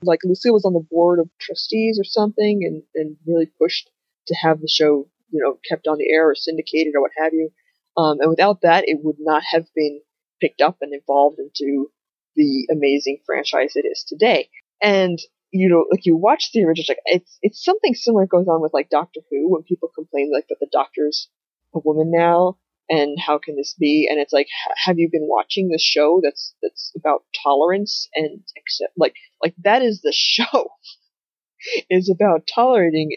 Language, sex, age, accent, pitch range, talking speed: English, female, 20-39, American, 155-205 Hz, 195 wpm